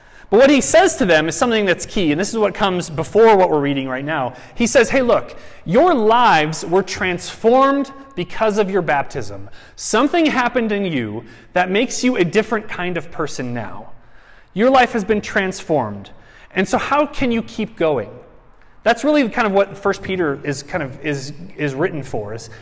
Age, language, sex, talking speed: 30-49, English, male, 195 wpm